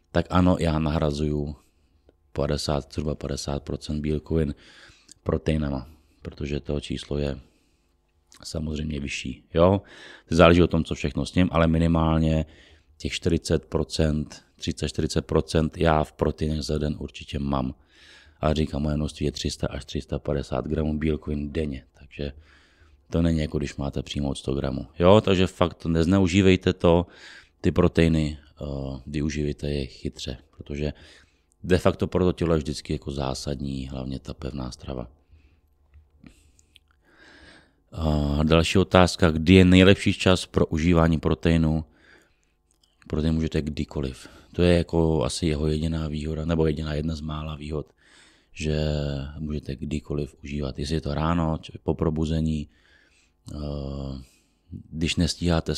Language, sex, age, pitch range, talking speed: Czech, male, 30-49, 75-80 Hz, 130 wpm